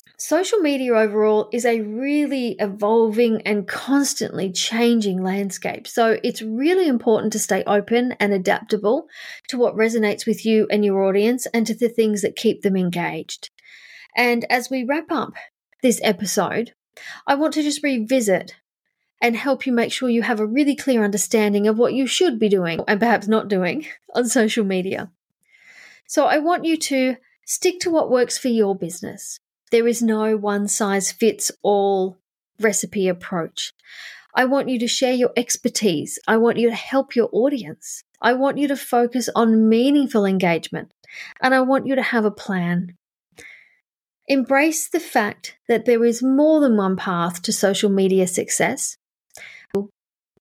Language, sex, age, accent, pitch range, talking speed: English, female, 30-49, Australian, 205-260 Hz, 160 wpm